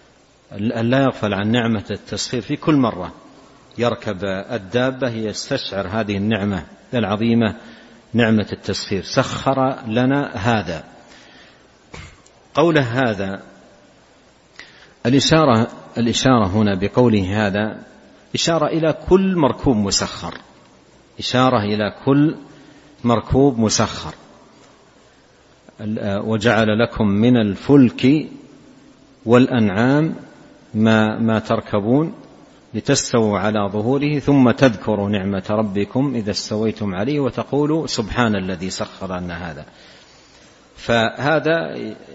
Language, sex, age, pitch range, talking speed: Arabic, male, 50-69, 105-130 Hz, 85 wpm